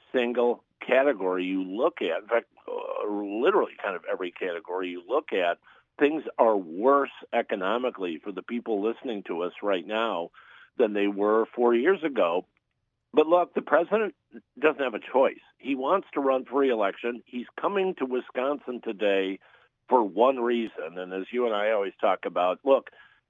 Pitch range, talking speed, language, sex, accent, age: 105-140 Hz, 165 wpm, English, male, American, 50-69